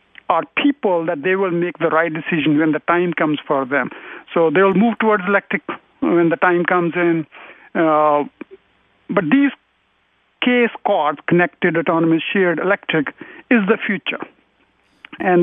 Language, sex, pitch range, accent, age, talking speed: English, male, 155-195 Hz, Indian, 50-69, 150 wpm